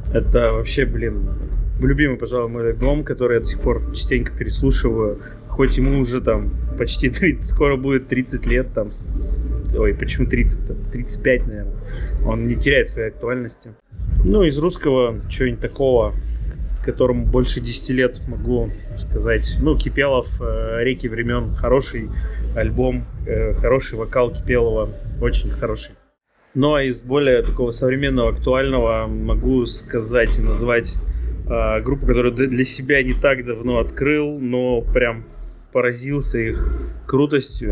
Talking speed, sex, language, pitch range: 135 wpm, male, Russian, 110-130 Hz